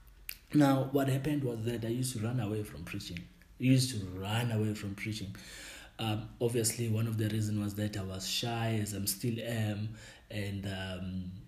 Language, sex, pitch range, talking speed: English, male, 100-115 Hz, 190 wpm